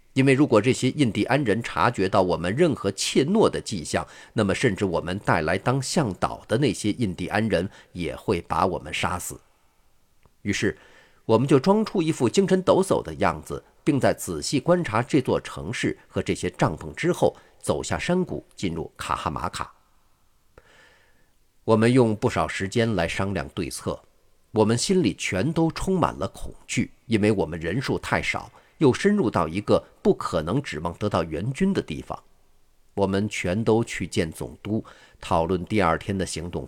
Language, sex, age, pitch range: Chinese, male, 50-69, 90-135 Hz